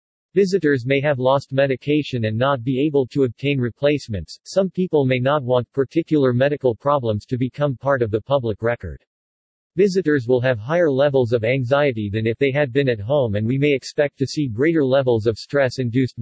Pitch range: 115-150 Hz